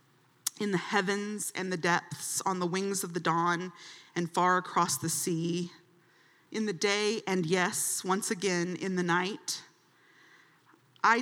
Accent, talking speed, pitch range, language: American, 150 wpm, 175-205 Hz, English